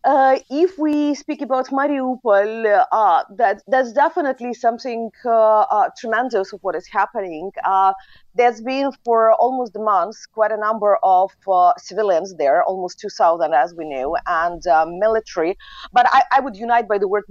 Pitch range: 185-235 Hz